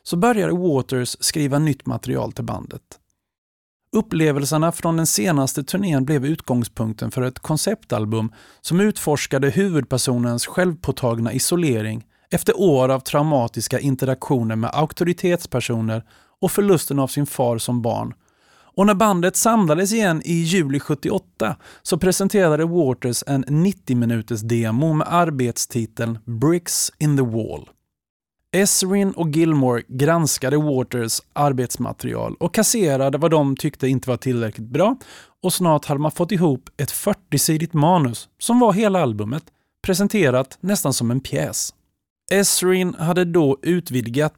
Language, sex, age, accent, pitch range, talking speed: Swedish, male, 30-49, native, 125-175 Hz, 130 wpm